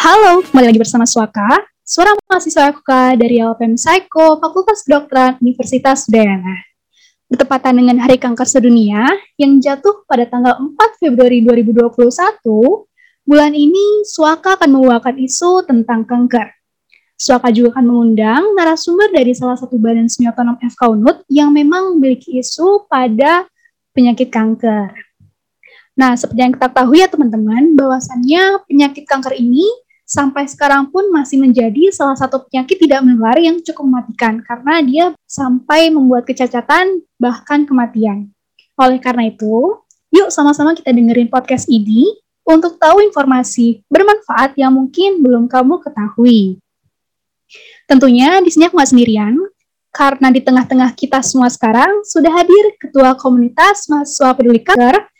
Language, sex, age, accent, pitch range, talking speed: Indonesian, female, 20-39, native, 245-325 Hz, 130 wpm